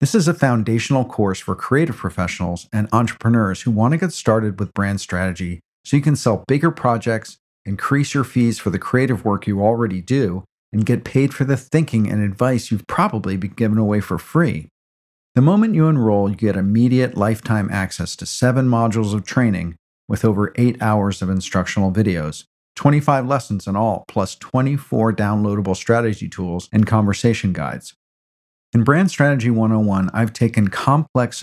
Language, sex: English, male